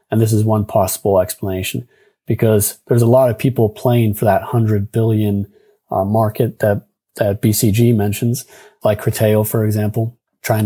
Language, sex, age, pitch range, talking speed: English, male, 30-49, 110-125 Hz, 160 wpm